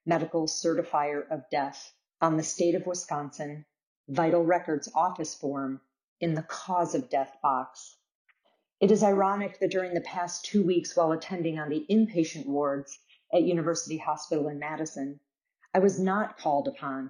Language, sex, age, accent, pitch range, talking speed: English, female, 40-59, American, 145-175 Hz, 155 wpm